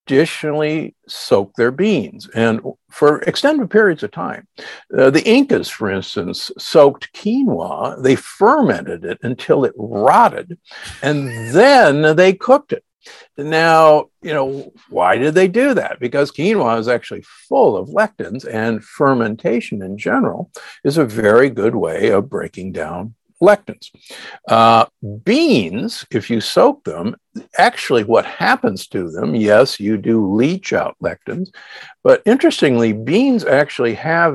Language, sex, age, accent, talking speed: English, male, 60-79, American, 135 wpm